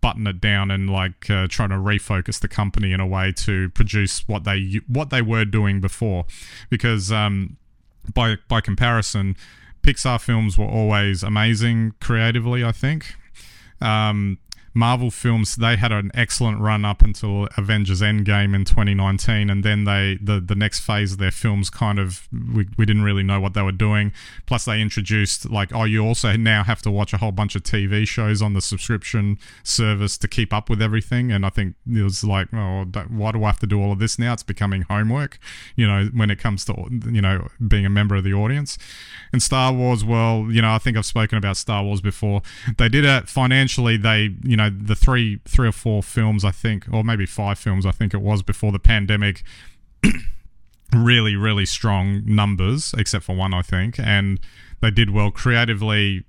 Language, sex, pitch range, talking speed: English, male, 100-115 Hz, 195 wpm